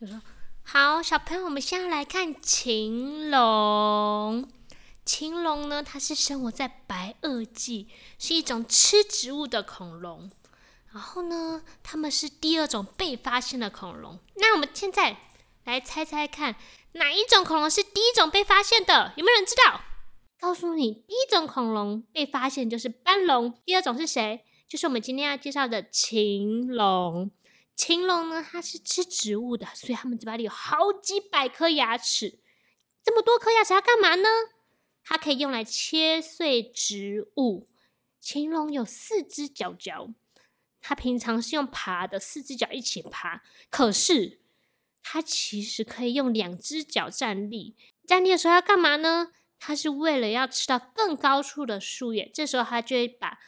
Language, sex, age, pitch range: Chinese, female, 20-39, 230-335 Hz